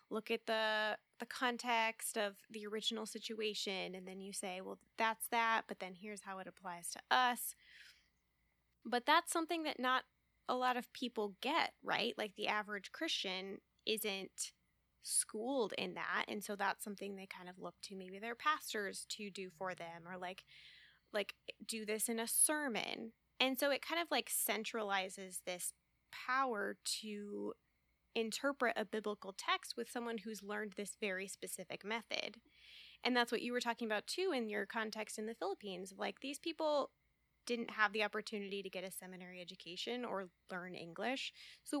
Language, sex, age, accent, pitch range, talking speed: English, female, 10-29, American, 195-240 Hz, 170 wpm